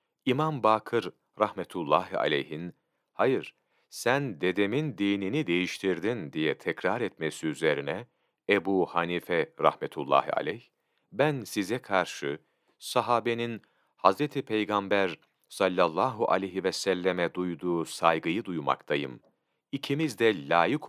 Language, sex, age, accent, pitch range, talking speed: Turkish, male, 40-59, native, 95-125 Hz, 95 wpm